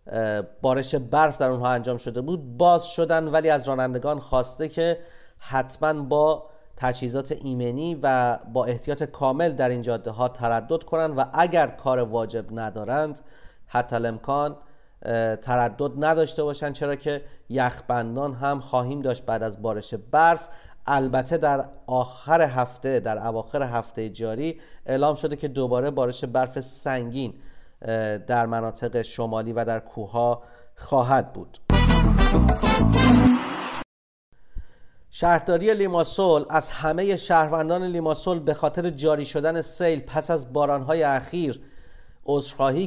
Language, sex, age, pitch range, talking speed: Persian, male, 30-49, 125-155 Hz, 120 wpm